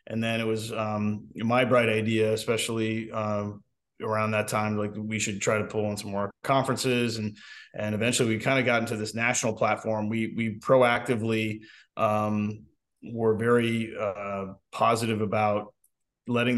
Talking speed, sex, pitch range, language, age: 160 wpm, male, 105-115 Hz, English, 20-39